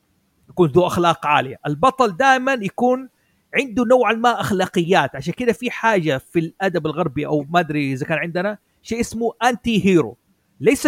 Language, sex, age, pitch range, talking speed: Arabic, male, 40-59, 160-230 Hz, 160 wpm